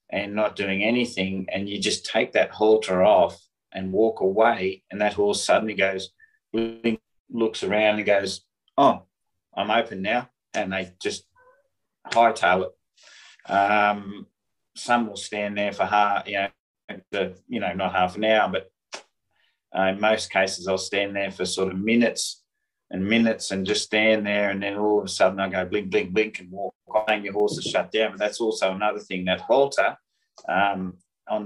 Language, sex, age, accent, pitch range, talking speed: English, male, 30-49, Australian, 95-110 Hz, 175 wpm